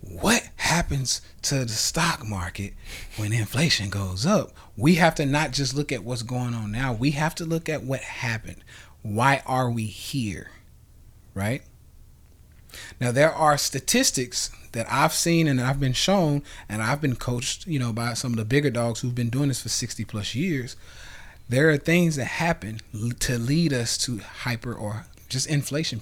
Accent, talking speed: American, 180 wpm